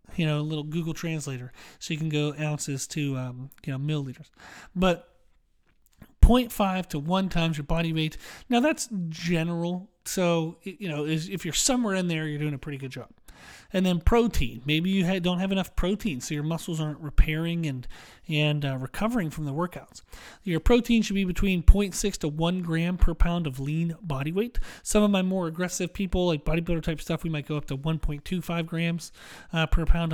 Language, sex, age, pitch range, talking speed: English, male, 30-49, 150-190 Hz, 195 wpm